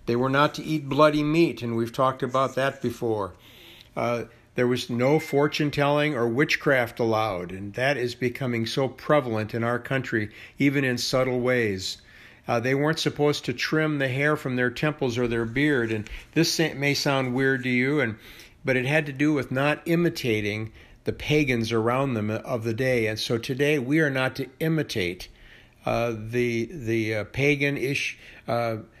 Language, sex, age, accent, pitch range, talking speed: English, male, 60-79, American, 115-140 Hz, 175 wpm